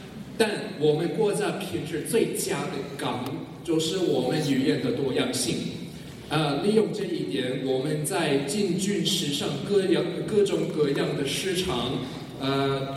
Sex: male